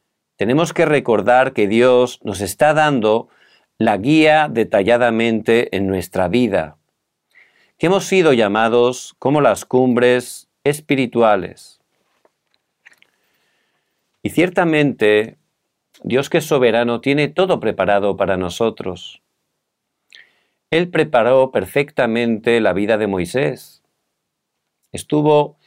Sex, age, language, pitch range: male, 50-69, Korean, 110-150 Hz